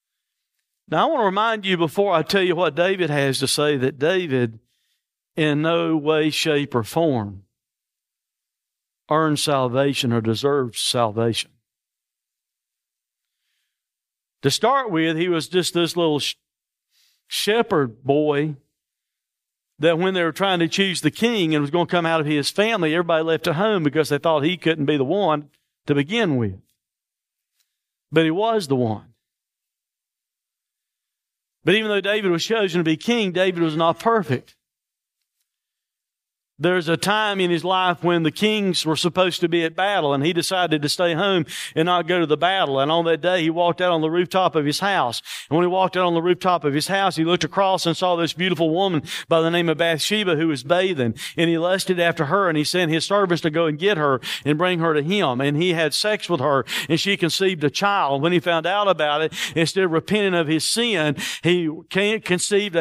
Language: English